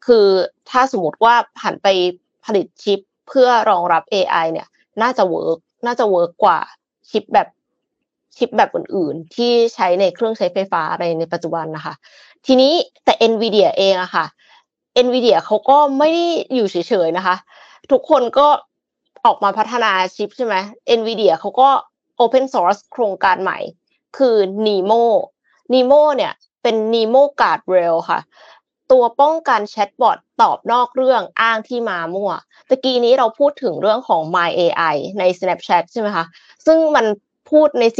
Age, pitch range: 20-39, 195-265 Hz